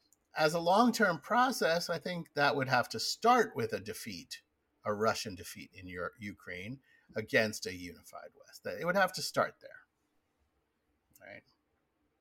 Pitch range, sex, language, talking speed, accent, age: 100-145 Hz, male, English, 155 wpm, American, 50-69